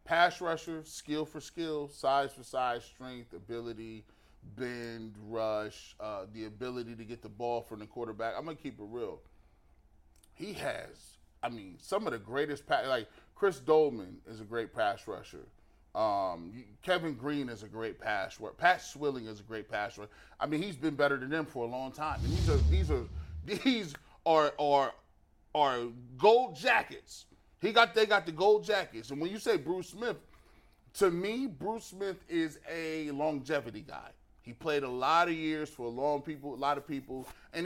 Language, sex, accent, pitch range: English, male, American, 115-160 Hz